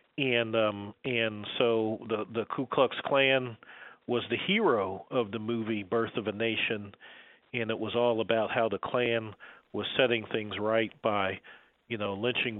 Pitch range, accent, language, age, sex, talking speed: 110-135 Hz, American, English, 40-59, male, 165 wpm